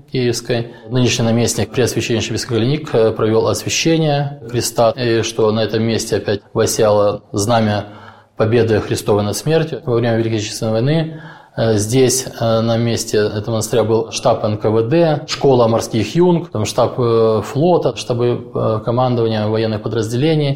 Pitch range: 110-120 Hz